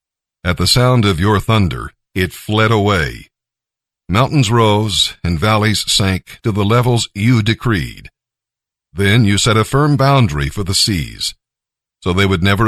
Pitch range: 95-120 Hz